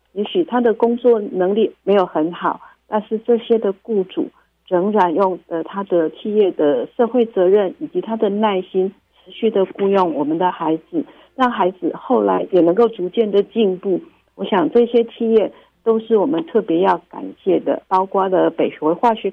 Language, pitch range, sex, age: Chinese, 180-230 Hz, female, 50-69